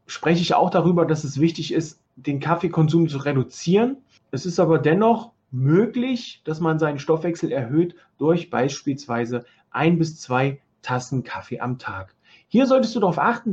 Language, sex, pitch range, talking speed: German, male, 140-190 Hz, 160 wpm